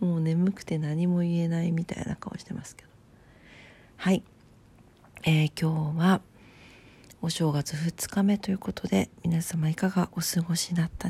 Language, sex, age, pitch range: Japanese, female, 40-59, 125-195 Hz